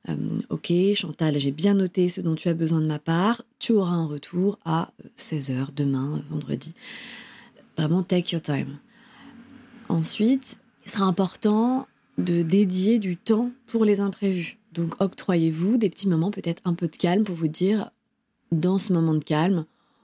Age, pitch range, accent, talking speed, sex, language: 30-49, 165-230 Hz, French, 165 wpm, female, French